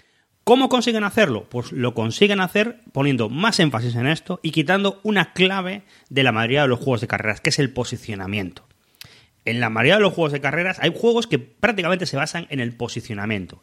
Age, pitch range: 30-49, 120-165 Hz